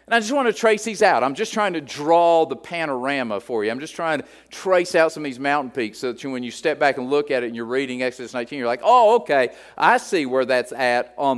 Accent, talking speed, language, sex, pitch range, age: American, 280 wpm, English, male, 145-220 Hz, 50-69